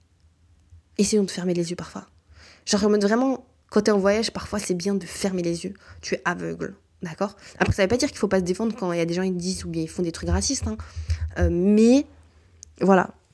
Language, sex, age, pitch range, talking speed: French, female, 20-39, 170-210 Hz, 235 wpm